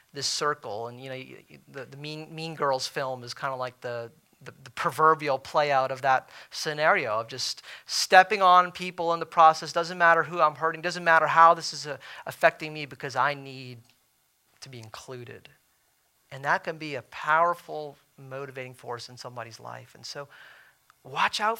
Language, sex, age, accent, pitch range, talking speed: English, male, 40-59, American, 130-165 Hz, 190 wpm